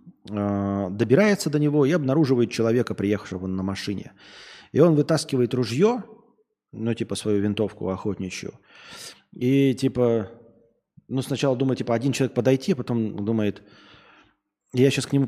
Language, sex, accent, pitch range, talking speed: Russian, male, native, 105-145 Hz, 135 wpm